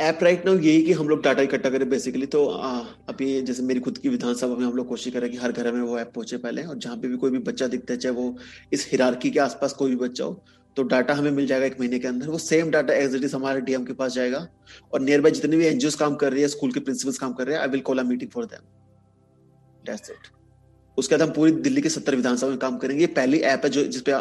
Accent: native